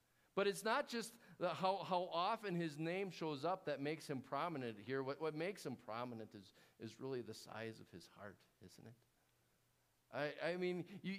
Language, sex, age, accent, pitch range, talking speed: English, male, 50-69, American, 145-210 Hz, 195 wpm